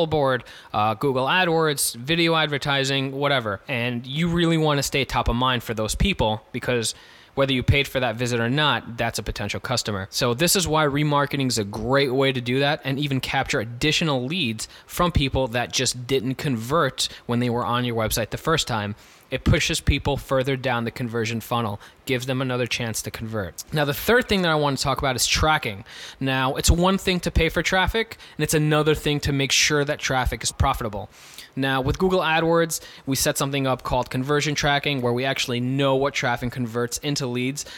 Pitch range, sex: 120-145 Hz, male